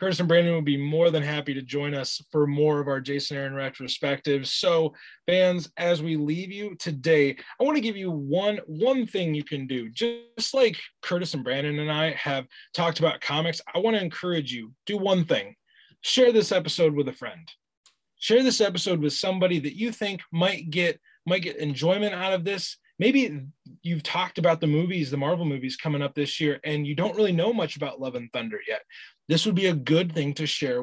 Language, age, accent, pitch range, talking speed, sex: English, 20-39, American, 145-180 Hz, 210 wpm, male